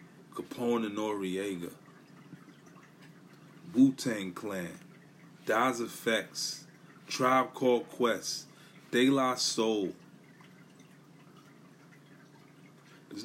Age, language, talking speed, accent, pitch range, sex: 30-49, English, 65 wpm, American, 110-155 Hz, male